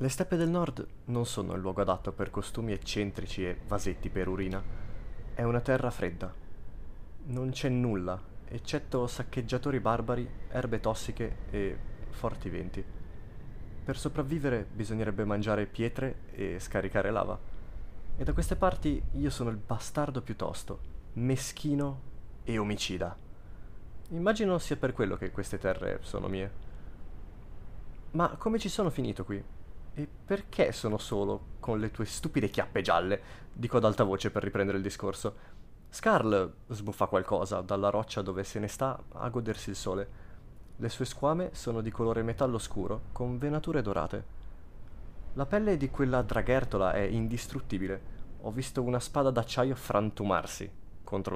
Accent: native